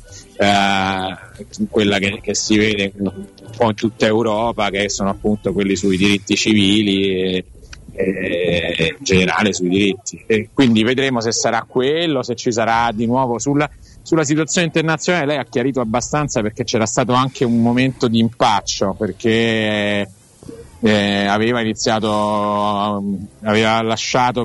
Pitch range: 100-120 Hz